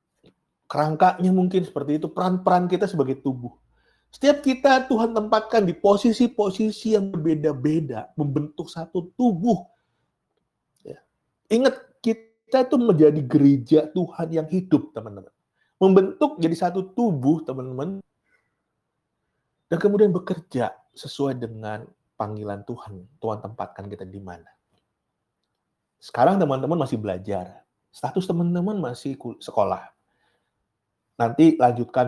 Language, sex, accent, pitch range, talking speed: Indonesian, male, native, 110-180 Hz, 105 wpm